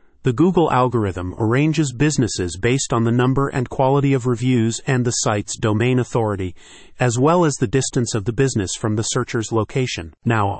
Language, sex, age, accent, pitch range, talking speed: English, male, 40-59, American, 110-135 Hz, 175 wpm